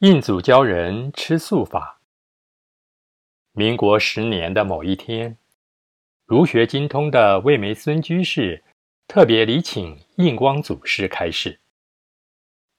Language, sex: Chinese, male